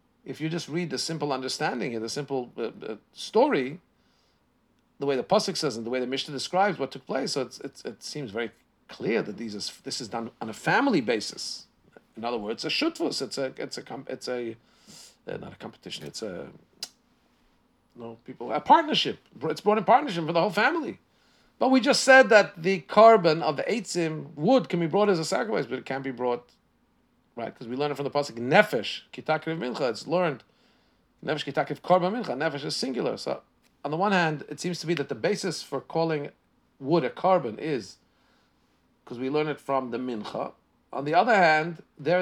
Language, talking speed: English, 205 wpm